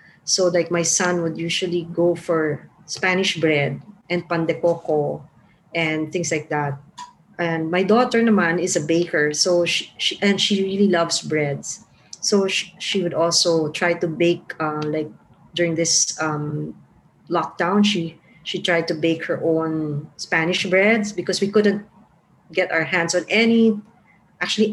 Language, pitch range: English, 160-195 Hz